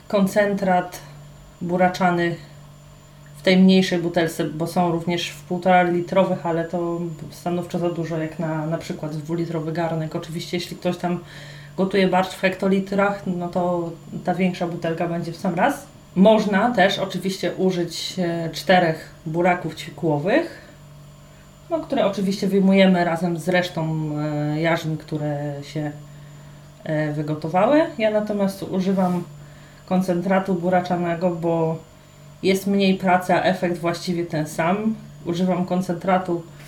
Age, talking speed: 30-49, 120 wpm